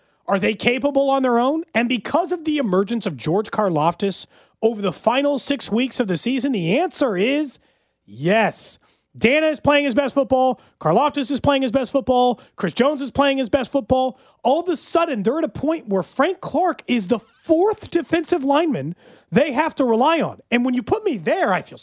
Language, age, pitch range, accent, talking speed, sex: English, 30-49, 190-280 Hz, American, 205 wpm, male